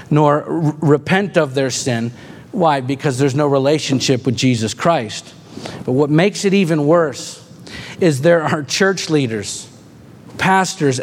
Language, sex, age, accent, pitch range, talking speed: English, male, 50-69, American, 145-180 Hz, 135 wpm